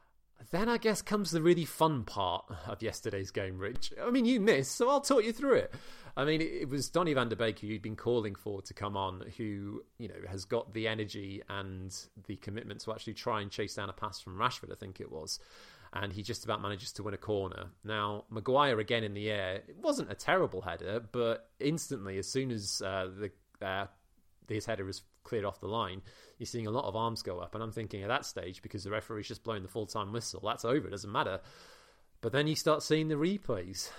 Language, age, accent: English, 30-49, British